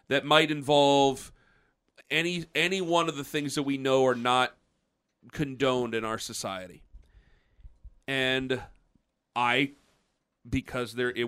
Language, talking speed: English, 120 wpm